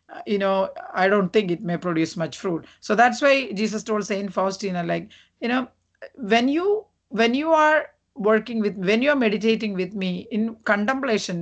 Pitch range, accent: 190-240 Hz, Indian